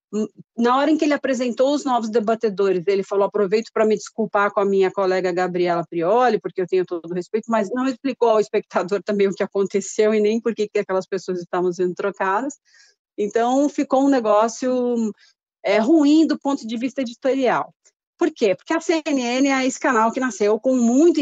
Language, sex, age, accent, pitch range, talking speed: Portuguese, female, 40-59, Brazilian, 190-245 Hz, 190 wpm